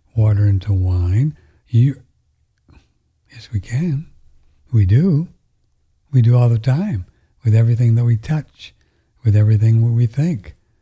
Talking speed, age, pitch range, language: 135 wpm, 60-79, 95-115 Hz, English